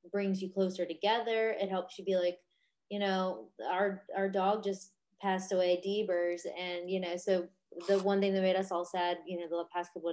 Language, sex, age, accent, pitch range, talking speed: English, female, 20-39, American, 175-200 Hz, 205 wpm